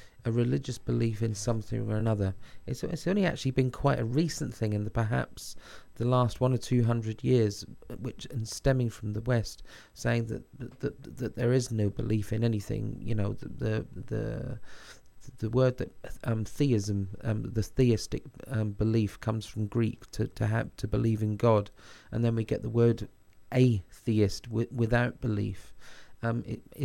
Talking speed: 175 wpm